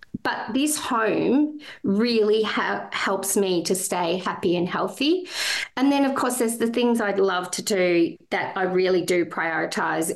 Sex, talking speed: female, 165 wpm